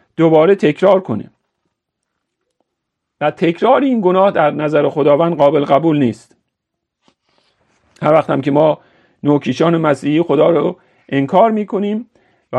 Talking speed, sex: 115 wpm, male